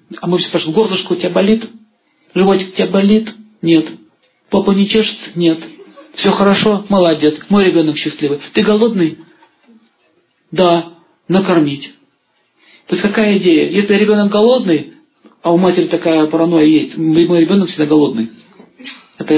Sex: male